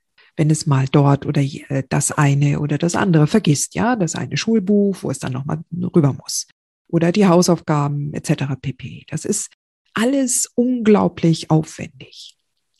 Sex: female